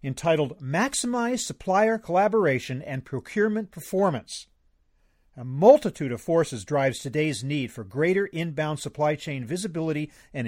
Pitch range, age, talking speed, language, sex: 130-195 Hz, 40-59, 120 wpm, English, male